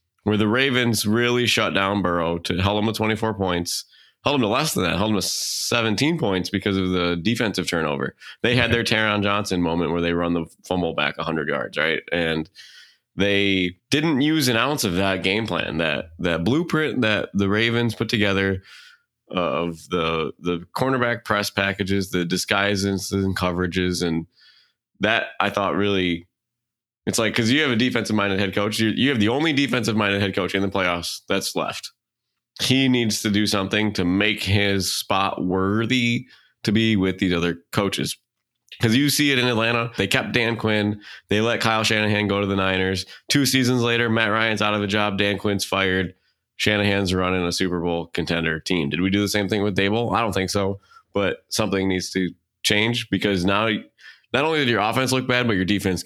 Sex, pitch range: male, 90-110 Hz